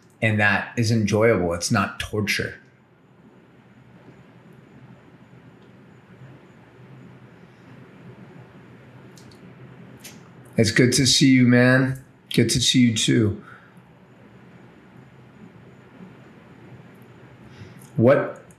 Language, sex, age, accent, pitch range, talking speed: English, male, 30-49, American, 100-125 Hz, 60 wpm